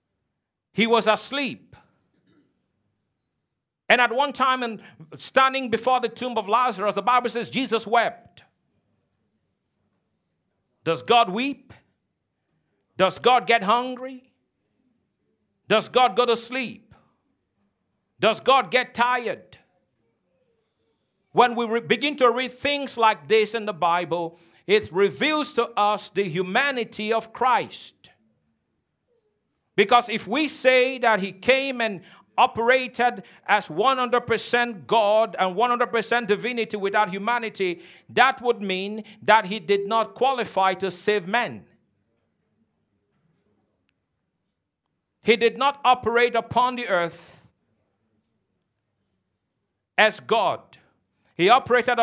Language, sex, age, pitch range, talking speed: English, male, 50-69, 200-245 Hz, 105 wpm